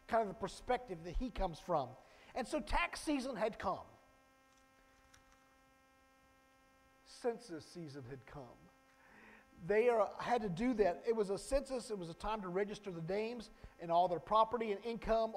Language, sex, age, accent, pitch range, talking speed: English, male, 50-69, American, 175-245 Hz, 165 wpm